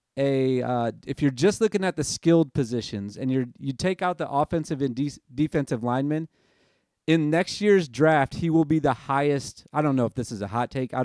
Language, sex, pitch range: English, male, 125-150 Hz